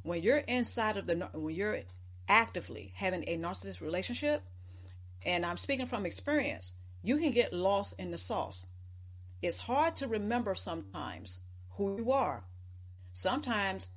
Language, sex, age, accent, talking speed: English, female, 50-69, American, 140 wpm